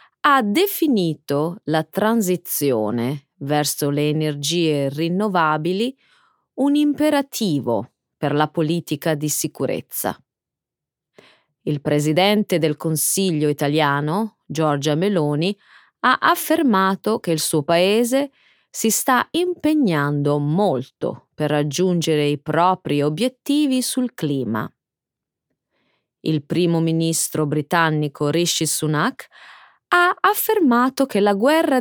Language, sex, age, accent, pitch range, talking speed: Italian, female, 30-49, native, 150-225 Hz, 95 wpm